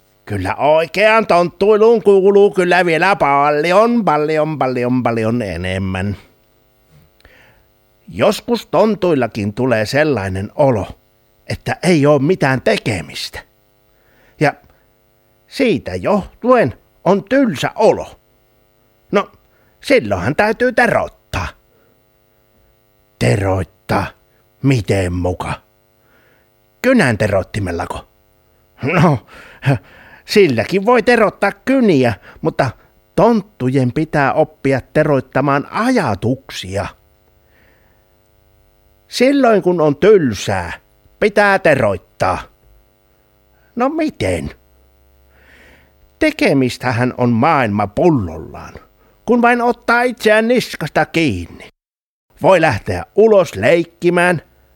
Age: 60-79